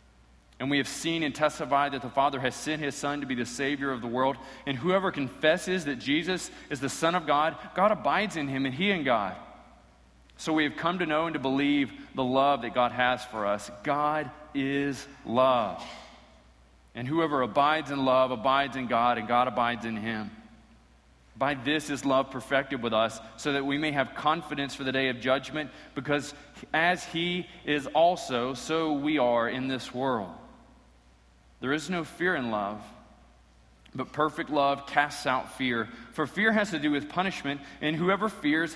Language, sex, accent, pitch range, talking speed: English, male, American, 120-150 Hz, 185 wpm